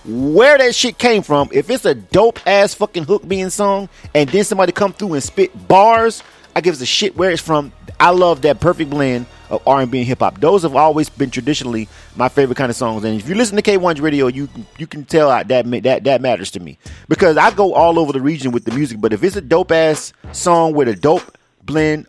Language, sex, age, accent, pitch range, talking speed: English, male, 30-49, American, 130-180 Hz, 235 wpm